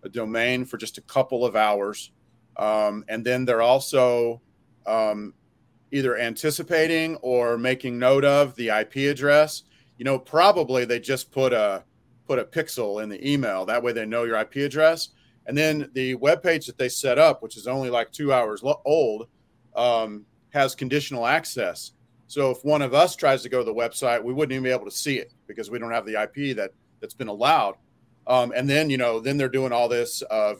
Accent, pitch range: American, 115-135 Hz